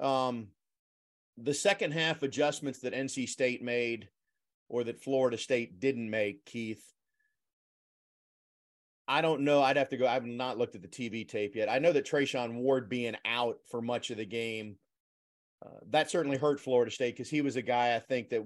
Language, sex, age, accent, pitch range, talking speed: English, male, 40-59, American, 120-145 Hz, 185 wpm